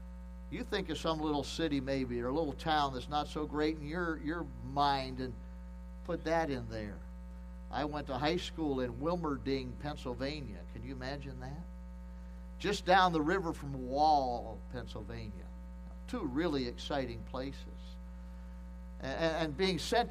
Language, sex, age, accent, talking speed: English, male, 50-69, American, 160 wpm